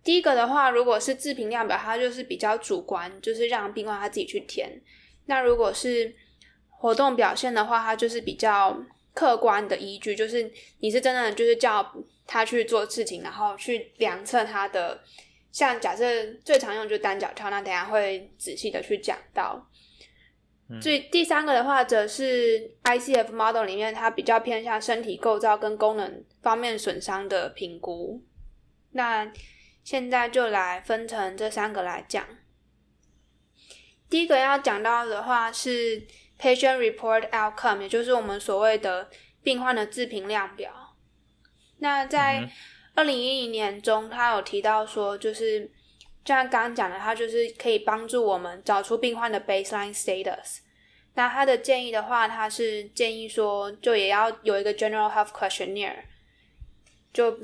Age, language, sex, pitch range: 10-29, Chinese, female, 210-250 Hz